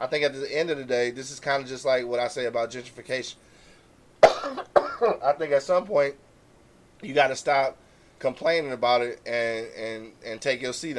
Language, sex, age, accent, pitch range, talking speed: English, male, 20-39, American, 120-150 Hz, 200 wpm